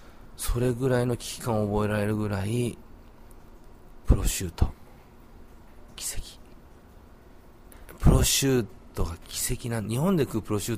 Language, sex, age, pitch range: Japanese, male, 40-59, 85-125 Hz